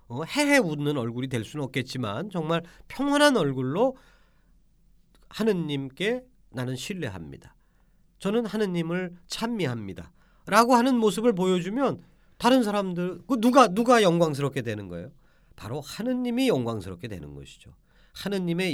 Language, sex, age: Korean, male, 40-59